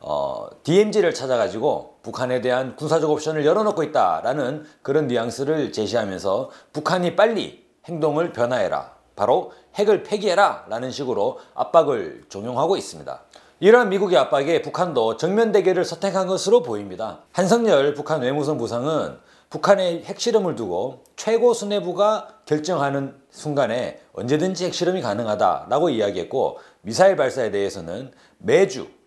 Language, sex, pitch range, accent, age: Korean, male, 145-205 Hz, native, 40-59